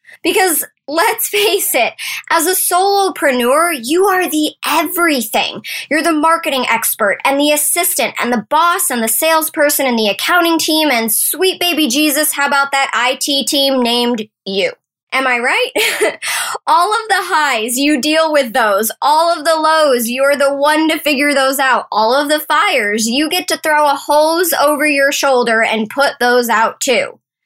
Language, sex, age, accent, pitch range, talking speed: English, male, 10-29, American, 255-330 Hz, 175 wpm